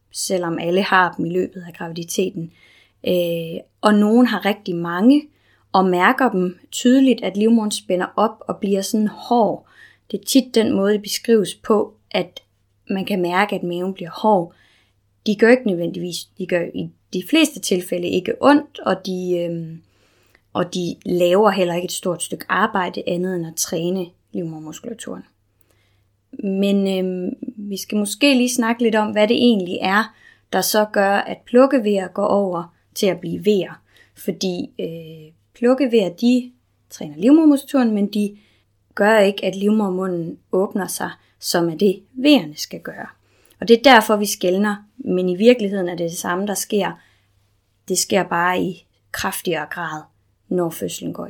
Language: Danish